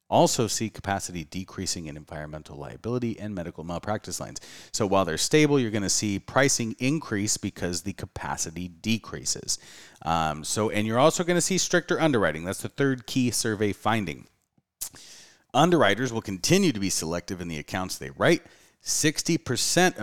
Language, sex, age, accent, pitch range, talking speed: English, male, 30-49, American, 90-125 Hz, 160 wpm